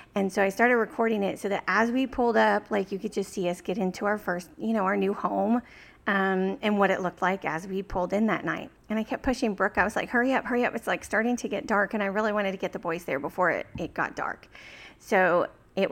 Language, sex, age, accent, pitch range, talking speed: English, female, 30-49, American, 180-210 Hz, 275 wpm